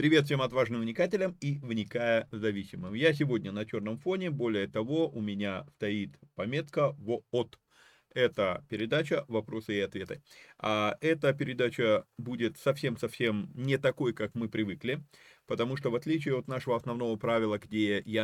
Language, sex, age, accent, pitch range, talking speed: Russian, male, 30-49, native, 105-145 Hz, 150 wpm